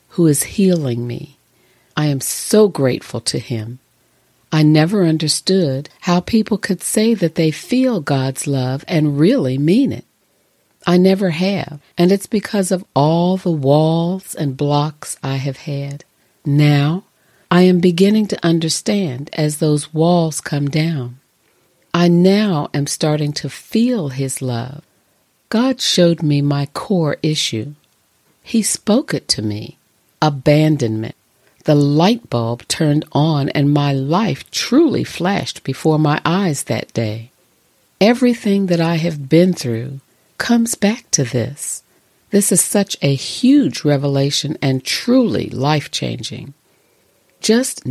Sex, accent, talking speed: female, American, 135 wpm